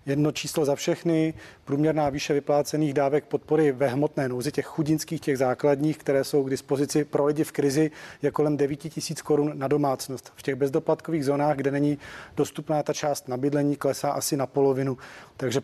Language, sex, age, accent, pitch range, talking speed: Czech, male, 40-59, native, 140-155 Hz, 175 wpm